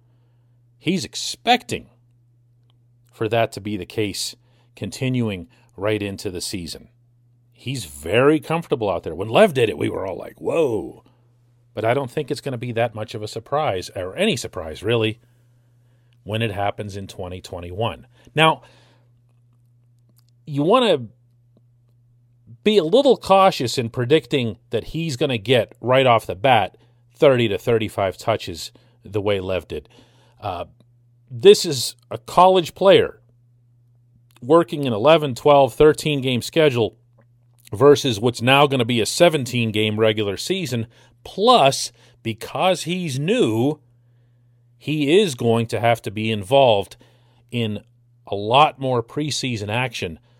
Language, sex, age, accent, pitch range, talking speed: English, male, 40-59, American, 115-130 Hz, 140 wpm